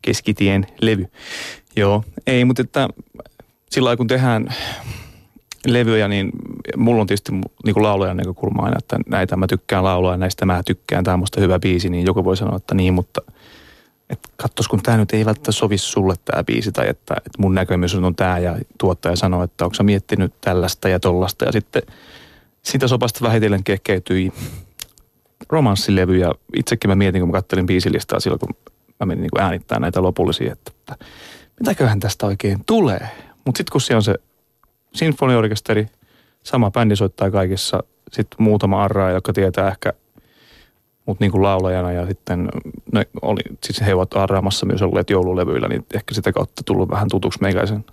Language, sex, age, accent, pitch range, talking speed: Finnish, male, 30-49, native, 95-115 Hz, 170 wpm